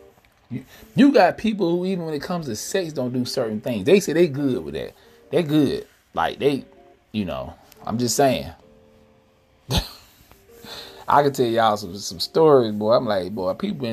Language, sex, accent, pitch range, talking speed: English, male, American, 115-170 Hz, 175 wpm